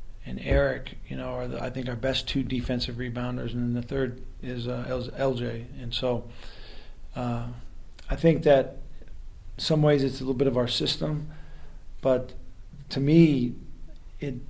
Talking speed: 160 wpm